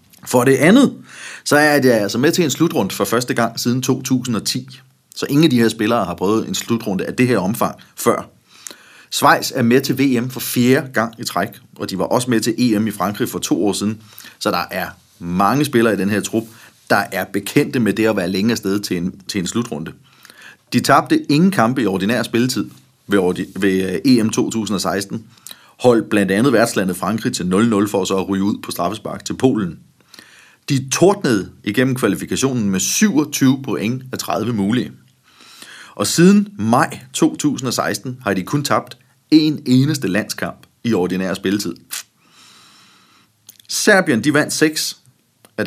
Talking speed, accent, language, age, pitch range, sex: 175 wpm, native, Danish, 30-49, 100-135 Hz, male